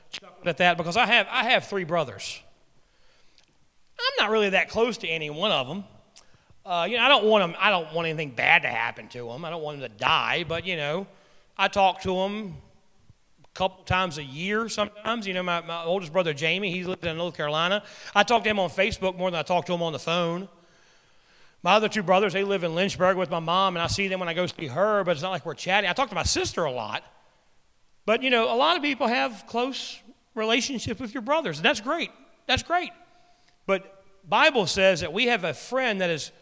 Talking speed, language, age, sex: 235 wpm, English, 40-59, male